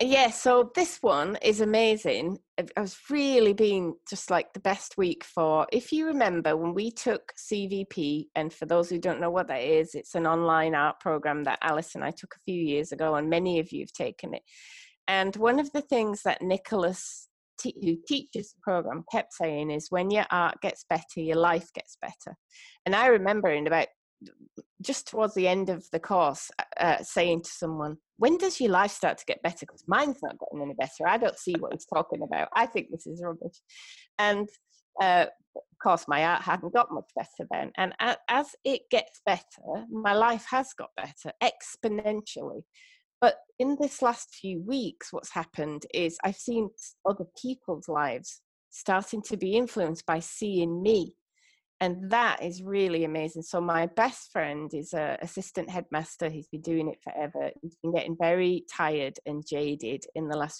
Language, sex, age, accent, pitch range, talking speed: English, female, 30-49, British, 160-220 Hz, 185 wpm